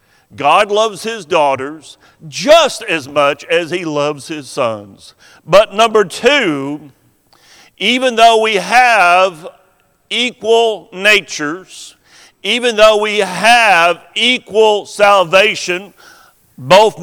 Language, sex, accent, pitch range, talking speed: English, male, American, 150-215 Hz, 100 wpm